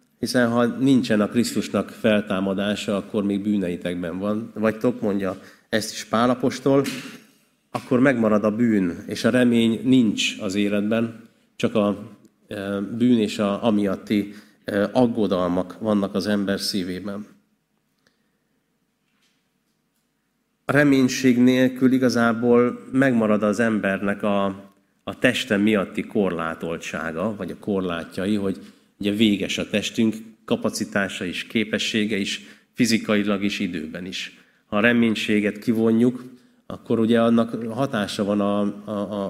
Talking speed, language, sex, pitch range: 120 wpm, Hungarian, male, 100-120 Hz